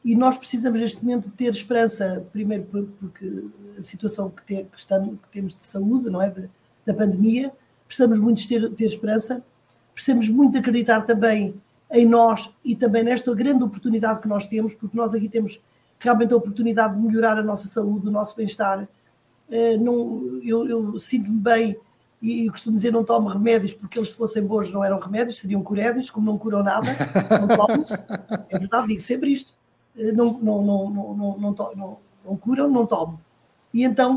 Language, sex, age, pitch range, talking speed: Portuguese, female, 20-39, 200-235 Hz, 190 wpm